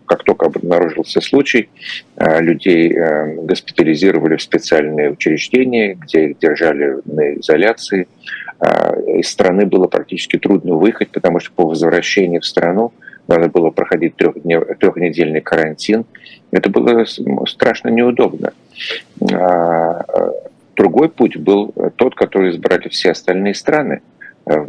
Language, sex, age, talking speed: Russian, male, 50-69, 110 wpm